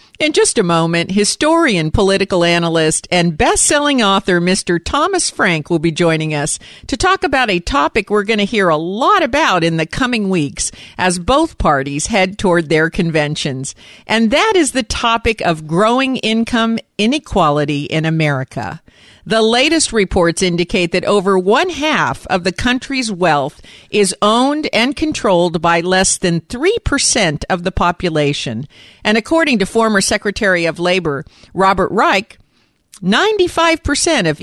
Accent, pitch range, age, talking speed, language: American, 170-245 Hz, 50-69, 150 wpm, English